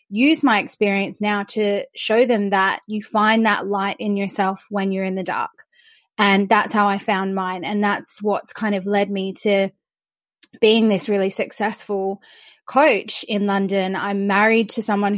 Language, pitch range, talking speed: English, 195-215 Hz, 175 wpm